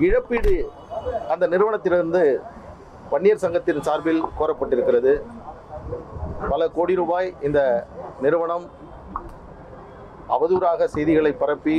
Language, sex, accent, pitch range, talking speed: Tamil, male, native, 150-235 Hz, 75 wpm